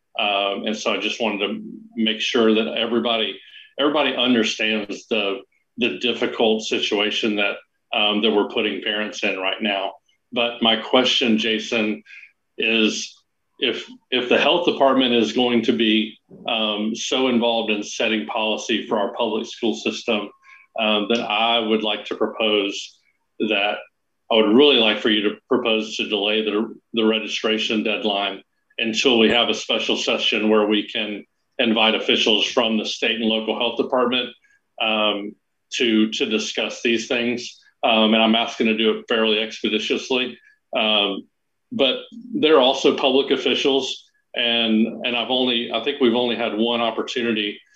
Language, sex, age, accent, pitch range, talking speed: English, male, 40-59, American, 105-120 Hz, 155 wpm